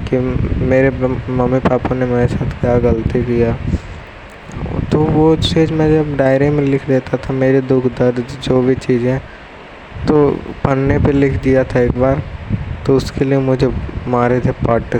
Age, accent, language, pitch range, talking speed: 20-39, native, Hindi, 125-155 Hz, 165 wpm